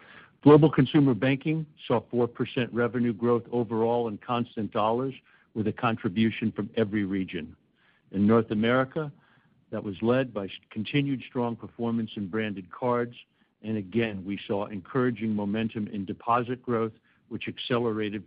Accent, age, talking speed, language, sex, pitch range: American, 60-79, 135 wpm, English, male, 105-120 Hz